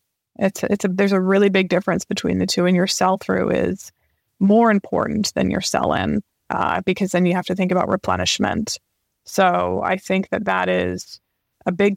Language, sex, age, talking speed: English, female, 20-39, 195 wpm